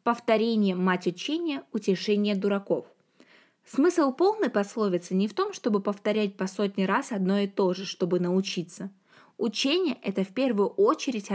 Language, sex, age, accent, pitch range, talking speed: Russian, female, 20-39, native, 195-245 Hz, 145 wpm